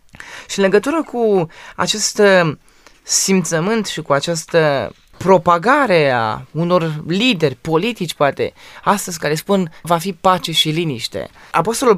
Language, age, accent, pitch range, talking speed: Romanian, 20-39, native, 155-205 Hz, 120 wpm